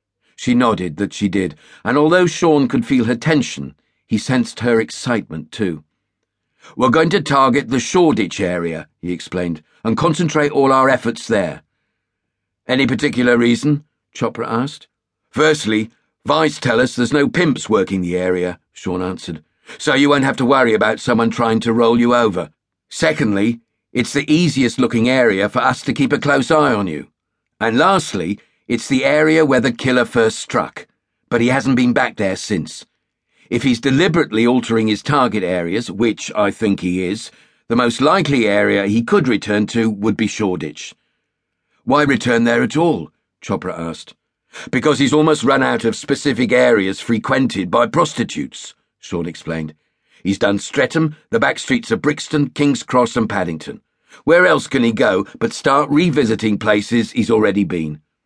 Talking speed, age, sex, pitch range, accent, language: 165 wpm, 50-69, male, 105-140 Hz, British, English